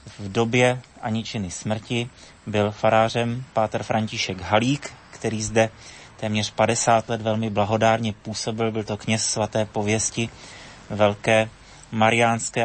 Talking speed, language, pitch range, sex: 115 wpm, Slovak, 105-120 Hz, male